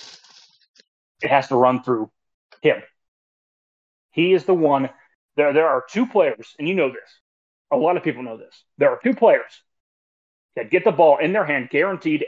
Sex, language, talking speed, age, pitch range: male, English, 180 wpm, 30-49, 135-185 Hz